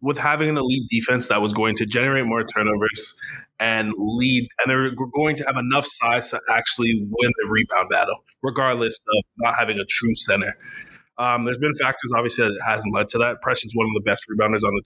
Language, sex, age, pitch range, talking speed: English, male, 20-39, 105-130 Hz, 210 wpm